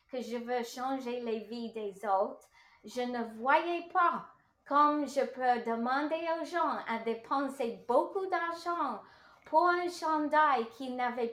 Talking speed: 145 wpm